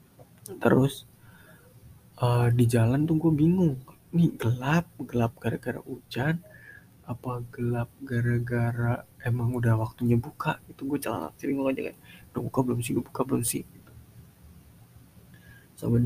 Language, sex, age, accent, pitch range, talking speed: Indonesian, male, 20-39, native, 120-155 Hz, 110 wpm